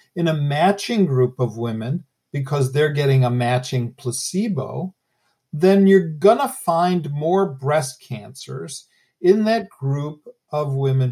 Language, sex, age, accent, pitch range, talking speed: English, male, 50-69, American, 135-185 Hz, 130 wpm